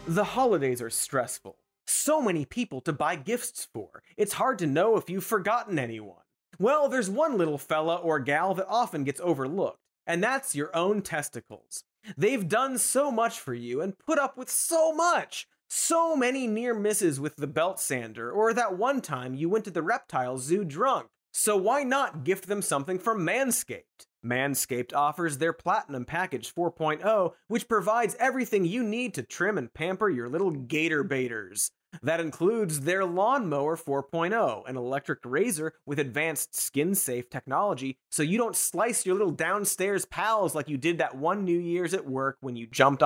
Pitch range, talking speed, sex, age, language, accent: 140-220 Hz, 175 wpm, male, 30-49, English, American